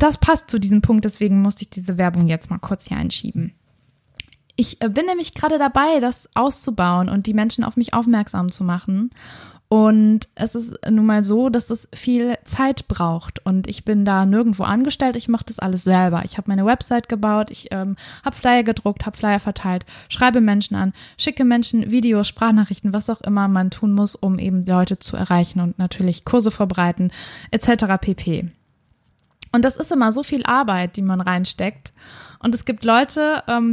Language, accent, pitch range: German, German, 190-250 Hz